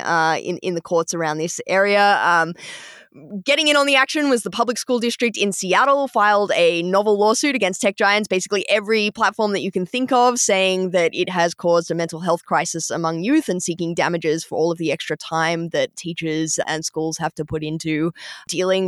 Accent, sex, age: Australian, female, 20-39